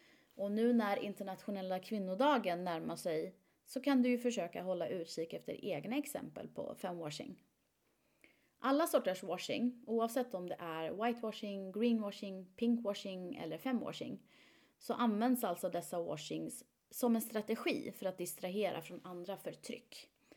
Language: Swedish